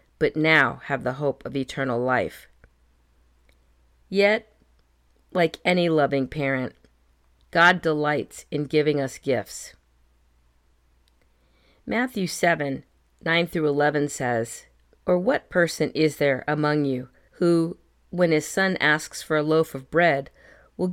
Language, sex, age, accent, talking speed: English, female, 50-69, American, 125 wpm